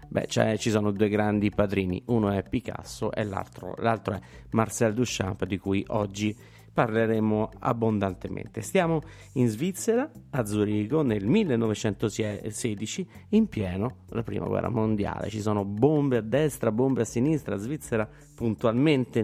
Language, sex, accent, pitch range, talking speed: Italian, male, native, 100-135 Hz, 130 wpm